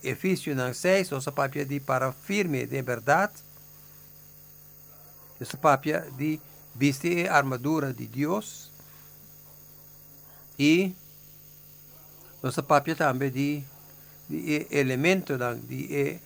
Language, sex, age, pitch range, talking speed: English, male, 60-79, 140-155 Hz, 90 wpm